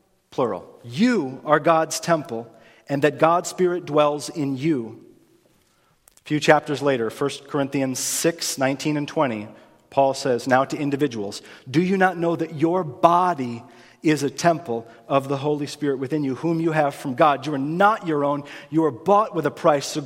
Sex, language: male, English